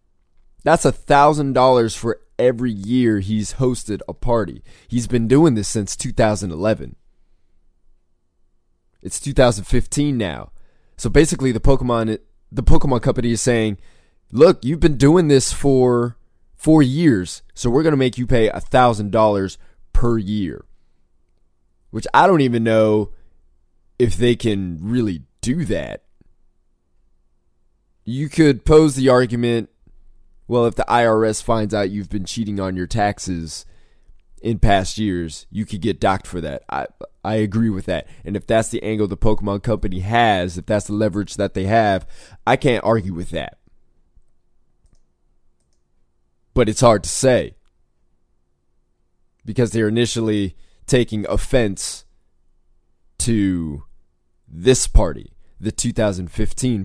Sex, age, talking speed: male, 20-39, 135 wpm